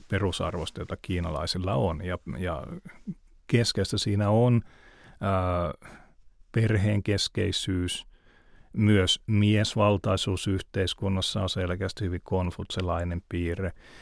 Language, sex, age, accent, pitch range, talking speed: Finnish, male, 30-49, native, 90-105 Hz, 75 wpm